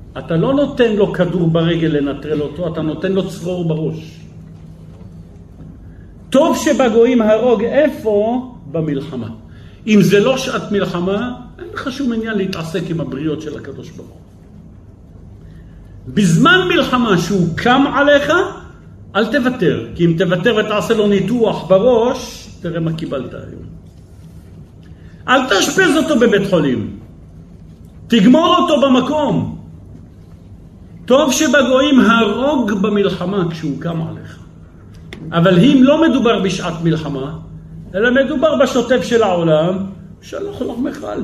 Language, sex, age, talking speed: Hebrew, male, 50-69, 115 wpm